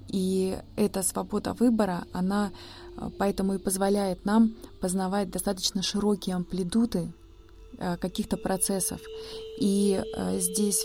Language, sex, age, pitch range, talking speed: Russian, female, 20-39, 180-205 Hz, 95 wpm